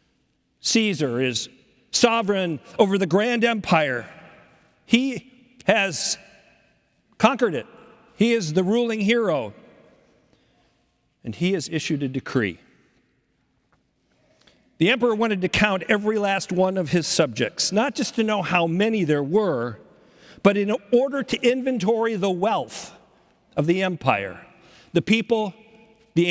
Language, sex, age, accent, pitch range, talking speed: English, male, 50-69, American, 155-225 Hz, 125 wpm